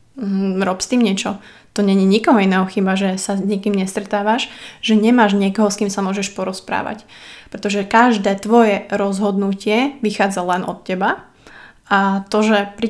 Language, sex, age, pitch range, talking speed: Slovak, female, 20-39, 195-220 Hz, 160 wpm